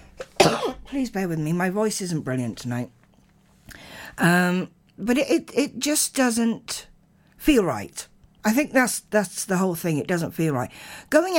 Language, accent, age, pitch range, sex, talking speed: English, British, 50-69, 150-195 Hz, female, 160 wpm